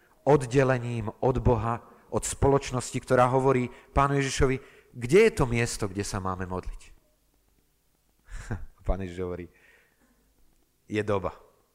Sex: male